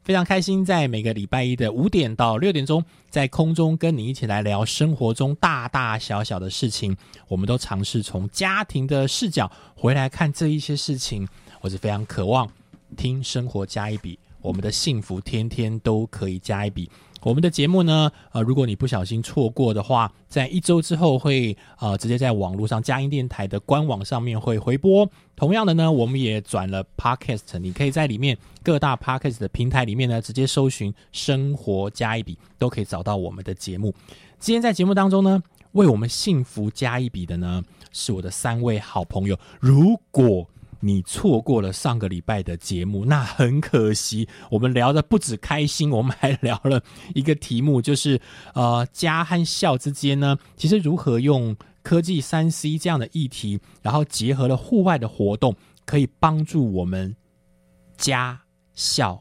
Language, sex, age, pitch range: Chinese, male, 20-39, 105-150 Hz